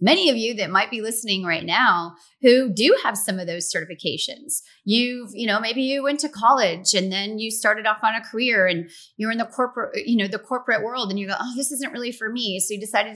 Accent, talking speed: American, 245 wpm